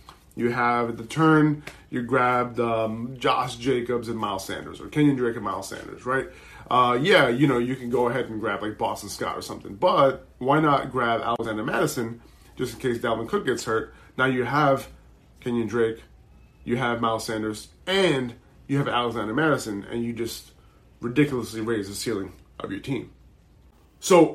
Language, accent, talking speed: English, American, 175 wpm